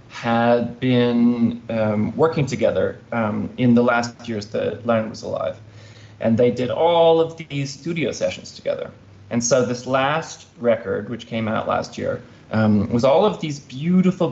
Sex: male